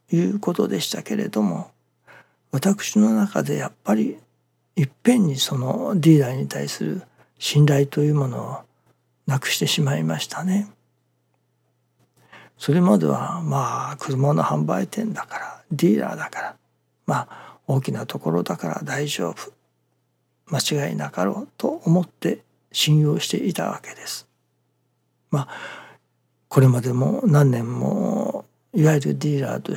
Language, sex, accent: Japanese, male, native